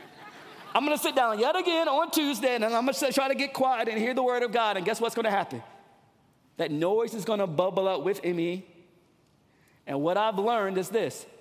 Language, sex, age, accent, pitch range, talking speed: English, male, 40-59, American, 195-295 Hz, 230 wpm